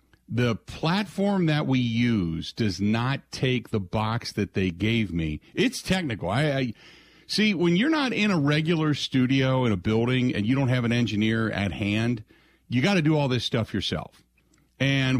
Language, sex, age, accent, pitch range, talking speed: English, male, 50-69, American, 95-135 Hz, 180 wpm